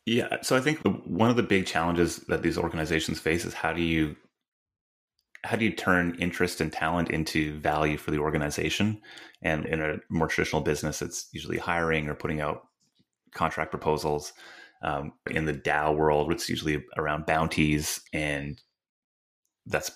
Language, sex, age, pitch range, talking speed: English, male, 30-49, 75-85 Hz, 160 wpm